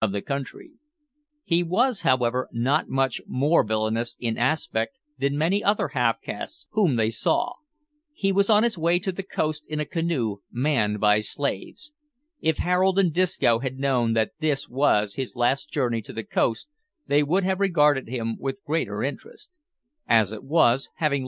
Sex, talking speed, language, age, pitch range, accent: male, 170 wpm, English, 50-69, 120-190 Hz, American